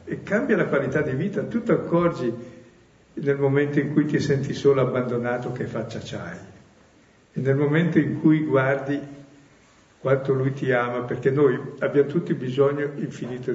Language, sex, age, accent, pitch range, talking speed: Italian, male, 60-79, native, 120-150 Hz, 160 wpm